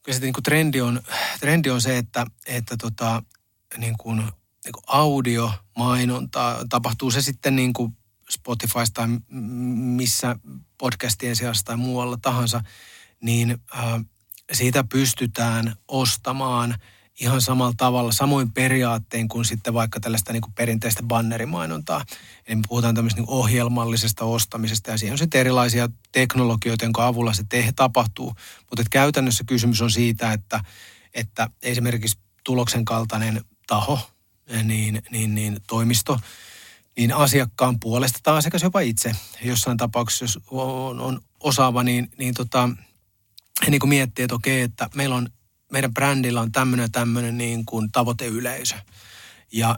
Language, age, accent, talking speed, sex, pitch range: Finnish, 30-49, native, 125 wpm, male, 115-125 Hz